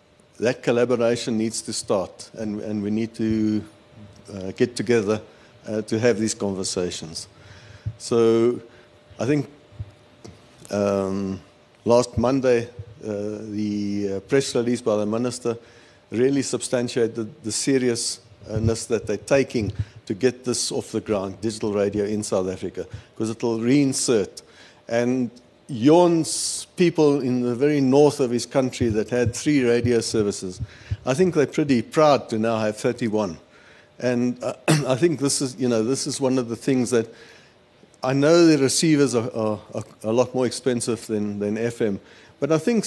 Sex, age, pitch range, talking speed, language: male, 50-69, 110-130 Hz, 155 wpm, English